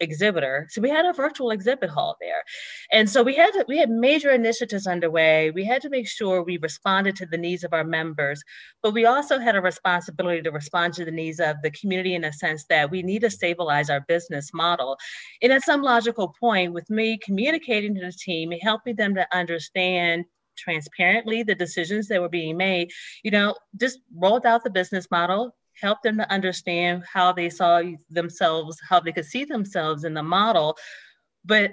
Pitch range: 160-210 Hz